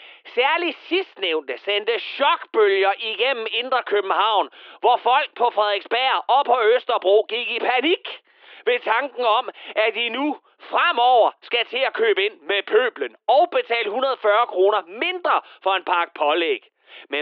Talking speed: 145 wpm